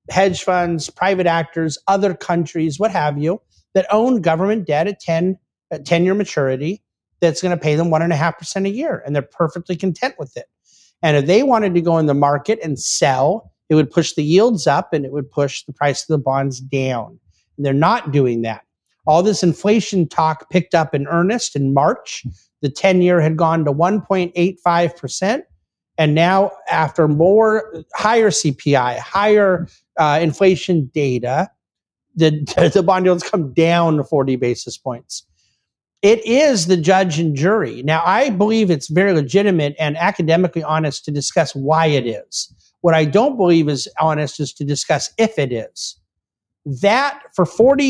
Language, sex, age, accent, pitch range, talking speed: English, male, 50-69, American, 145-190 Hz, 170 wpm